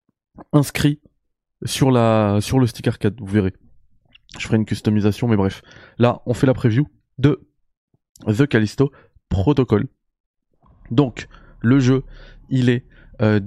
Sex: male